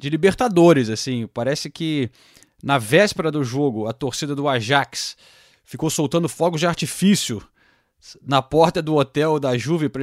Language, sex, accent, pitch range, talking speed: Portuguese, male, Brazilian, 120-150 Hz, 150 wpm